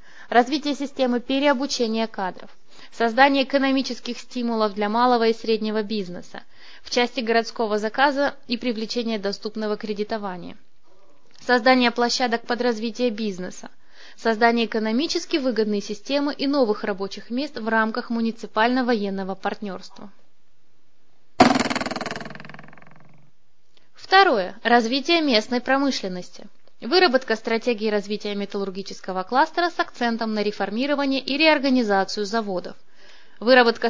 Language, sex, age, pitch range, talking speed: Russian, female, 20-39, 210-255 Hz, 95 wpm